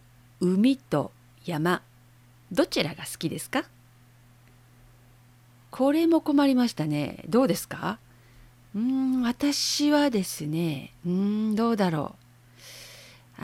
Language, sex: Japanese, female